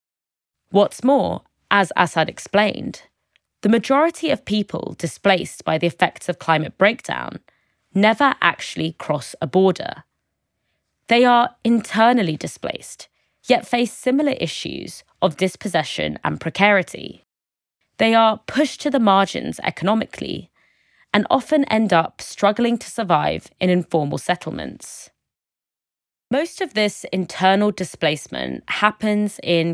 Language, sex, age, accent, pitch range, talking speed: English, female, 20-39, British, 165-220 Hz, 115 wpm